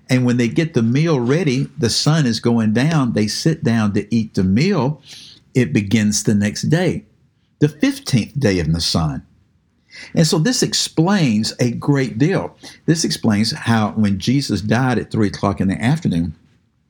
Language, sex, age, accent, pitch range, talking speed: English, male, 60-79, American, 105-140 Hz, 175 wpm